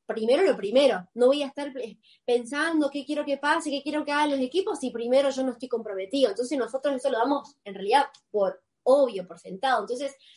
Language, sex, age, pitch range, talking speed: Spanish, female, 20-39, 225-290 Hz, 210 wpm